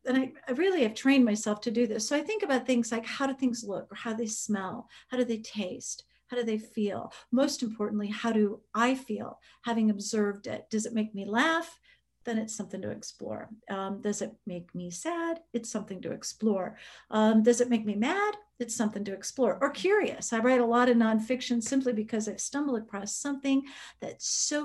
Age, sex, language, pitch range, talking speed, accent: 50-69, female, English, 210-255 Hz, 210 wpm, American